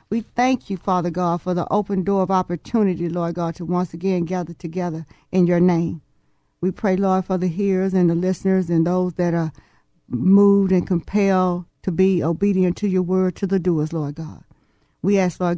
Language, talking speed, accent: English, 195 wpm, American